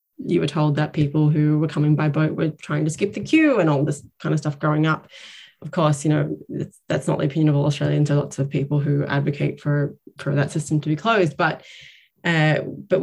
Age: 20-39